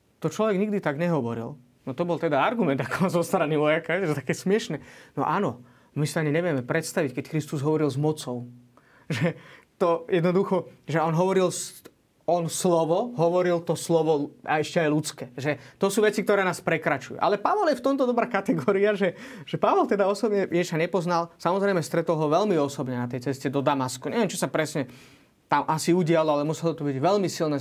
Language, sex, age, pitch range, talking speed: Slovak, male, 20-39, 140-175 Hz, 195 wpm